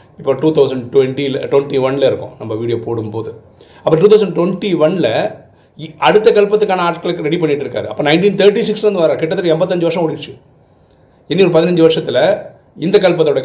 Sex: male